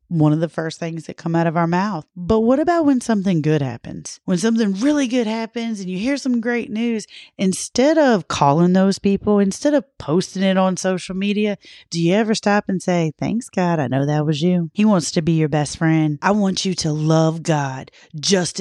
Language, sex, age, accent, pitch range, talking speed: English, female, 30-49, American, 155-205 Hz, 220 wpm